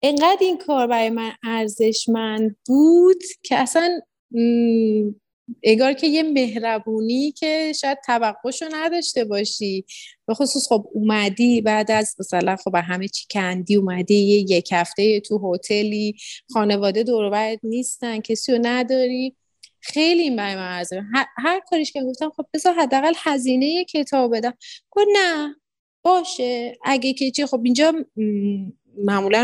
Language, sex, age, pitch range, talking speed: Persian, female, 30-49, 205-280 Hz, 135 wpm